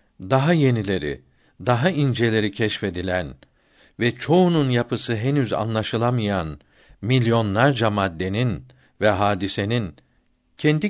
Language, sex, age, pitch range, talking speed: Turkish, male, 60-79, 95-145 Hz, 85 wpm